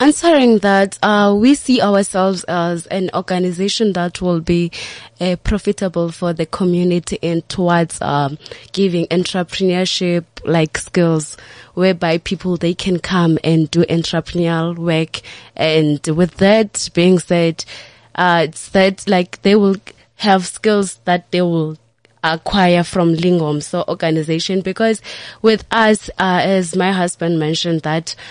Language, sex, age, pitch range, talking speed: English, female, 20-39, 165-195 Hz, 135 wpm